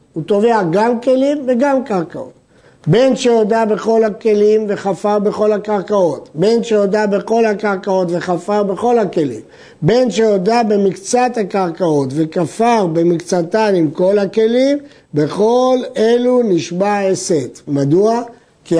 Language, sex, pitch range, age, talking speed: Hebrew, male, 170-225 Hz, 50-69, 110 wpm